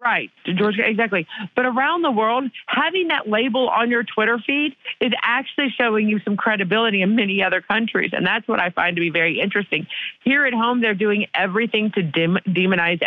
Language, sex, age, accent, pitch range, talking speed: English, female, 50-69, American, 185-250 Hz, 185 wpm